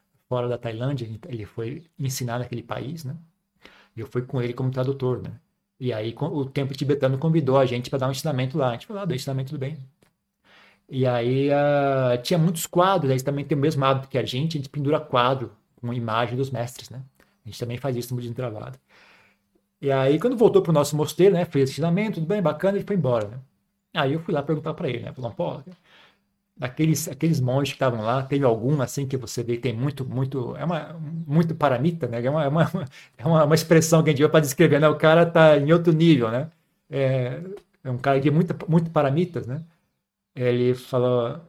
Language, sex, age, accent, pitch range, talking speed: Portuguese, male, 40-59, Brazilian, 125-160 Hz, 215 wpm